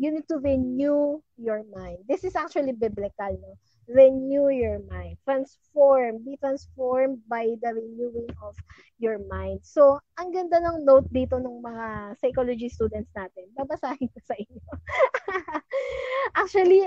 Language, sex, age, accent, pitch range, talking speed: English, female, 20-39, Filipino, 220-285 Hz, 140 wpm